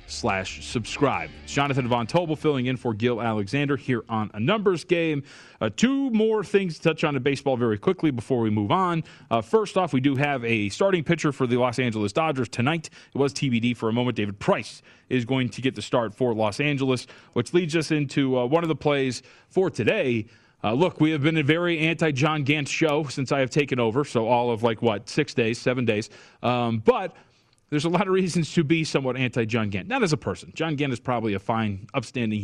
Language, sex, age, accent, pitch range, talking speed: English, male, 30-49, American, 120-160 Hz, 225 wpm